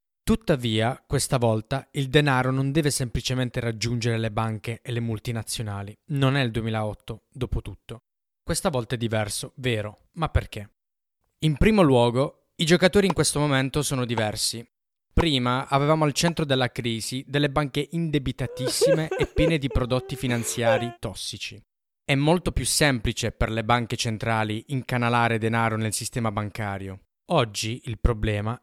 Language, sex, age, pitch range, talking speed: Italian, male, 20-39, 110-135 Hz, 140 wpm